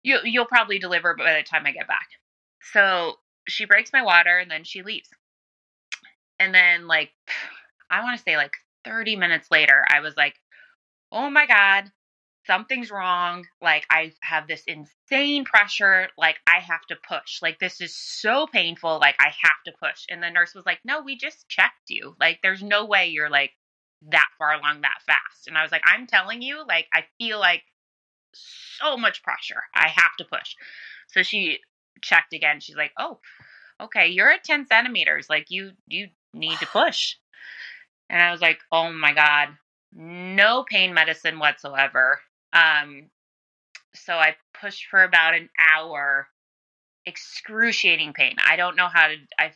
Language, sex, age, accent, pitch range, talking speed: English, female, 20-39, American, 155-195 Hz, 170 wpm